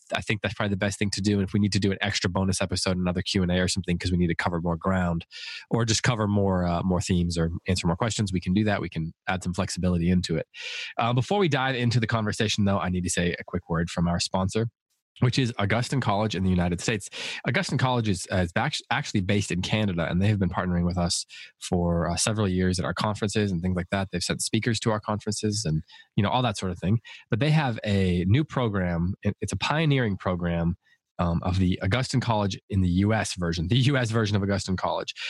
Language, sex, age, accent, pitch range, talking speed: English, male, 20-39, American, 90-110 Hz, 245 wpm